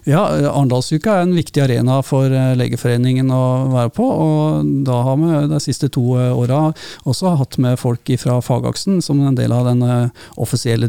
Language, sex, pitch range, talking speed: English, male, 120-135 Hz, 175 wpm